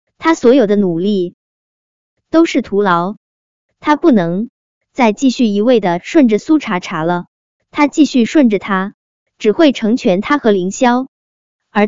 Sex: male